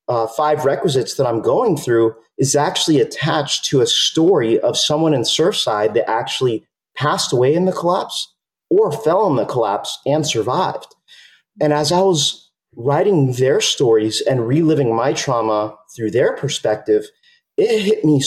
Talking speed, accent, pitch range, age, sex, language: 160 wpm, American, 130-195 Hz, 30-49, male, English